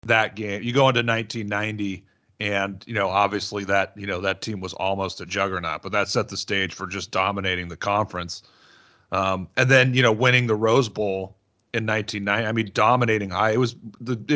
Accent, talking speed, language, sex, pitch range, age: American, 195 wpm, English, male, 100-125 Hz, 40-59